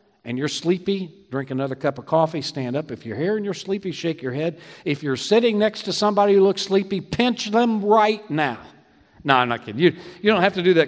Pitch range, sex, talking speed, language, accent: 130-190 Hz, male, 235 wpm, English, American